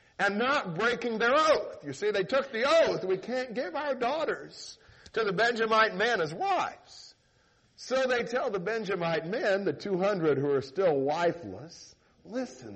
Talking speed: 165 wpm